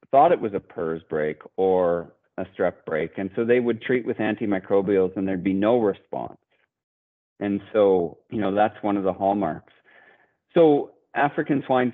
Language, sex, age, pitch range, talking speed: English, male, 40-59, 95-120 Hz, 170 wpm